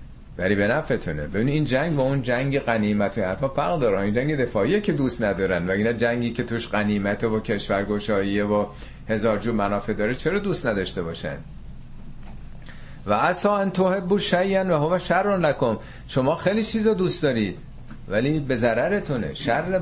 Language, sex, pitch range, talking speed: Persian, male, 105-155 Hz, 160 wpm